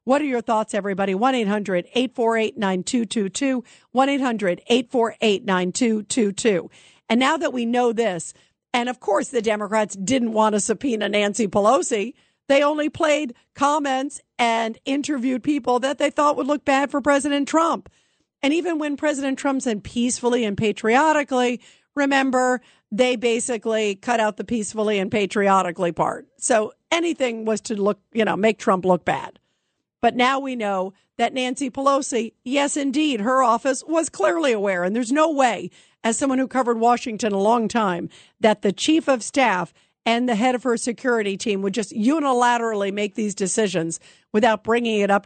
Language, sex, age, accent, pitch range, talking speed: English, female, 50-69, American, 210-265 Hz, 155 wpm